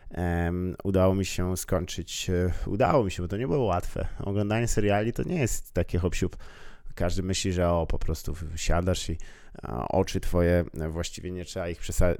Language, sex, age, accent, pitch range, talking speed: Polish, male, 20-39, native, 90-105 Hz, 170 wpm